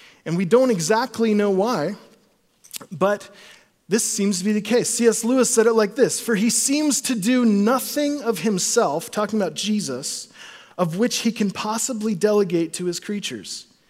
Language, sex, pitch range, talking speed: English, male, 175-235 Hz, 170 wpm